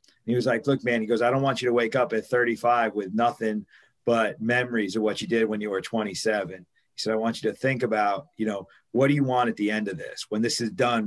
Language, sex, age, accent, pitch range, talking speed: English, male, 40-59, American, 110-125 Hz, 275 wpm